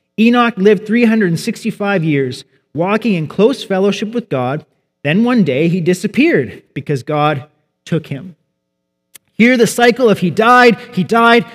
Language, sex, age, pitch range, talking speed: English, male, 30-49, 170-235 Hz, 140 wpm